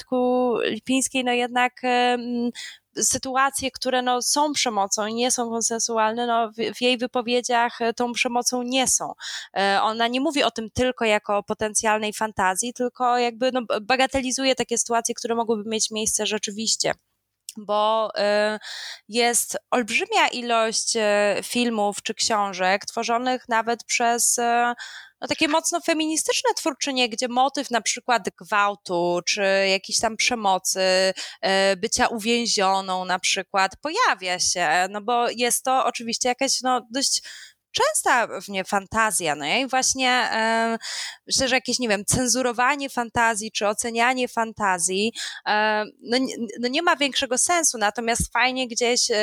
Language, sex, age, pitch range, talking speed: Polish, female, 20-39, 215-250 Hz, 135 wpm